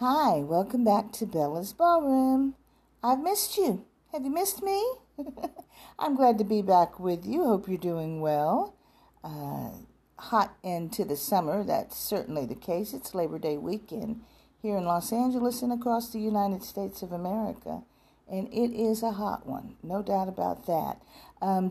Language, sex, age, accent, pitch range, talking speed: English, female, 50-69, American, 165-235 Hz, 165 wpm